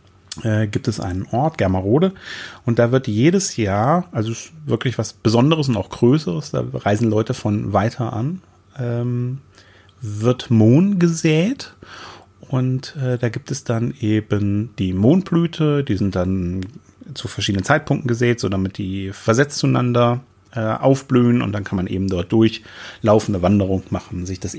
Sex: male